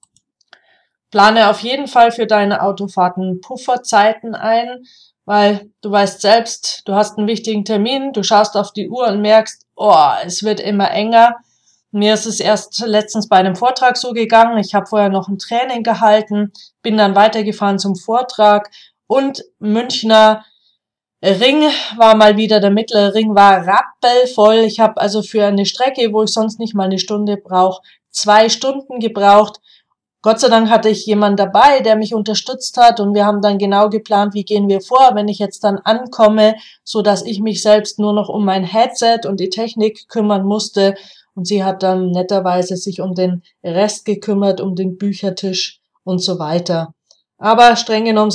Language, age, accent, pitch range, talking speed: German, 20-39, German, 200-225 Hz, 175 wpm